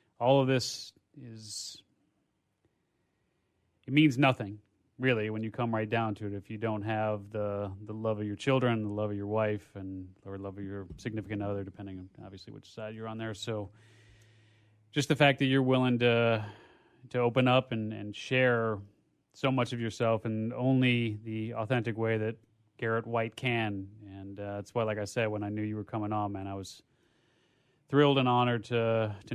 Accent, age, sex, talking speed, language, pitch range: American, 30-49, male, 195 wpm, English, 105-125 Hz